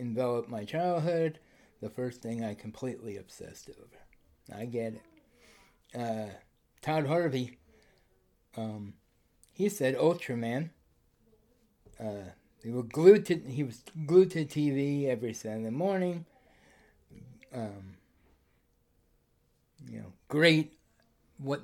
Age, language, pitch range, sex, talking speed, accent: 60-79, English, 110-145 Hz, male, 105 wpm, American